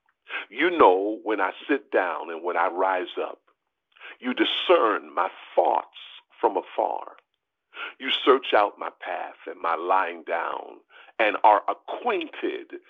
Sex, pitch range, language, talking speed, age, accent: male, 330-435 Hz, English, 135 wpm, 50-69, American